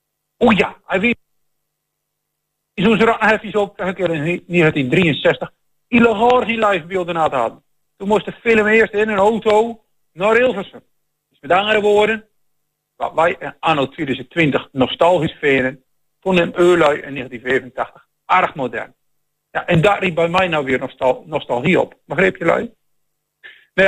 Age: 50-69